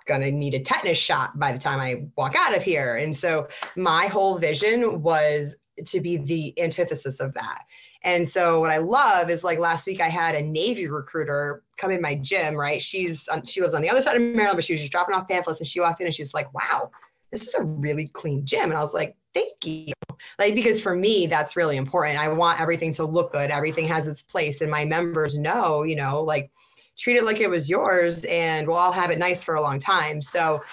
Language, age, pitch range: English, 20-39, 150-175 Hz